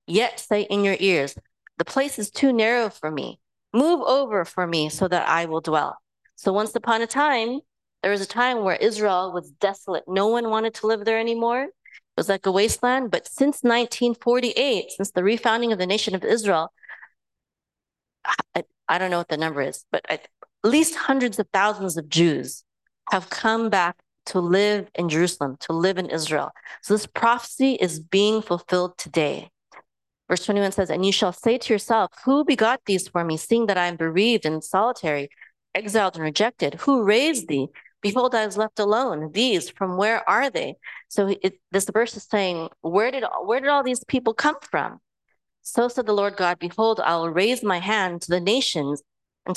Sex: female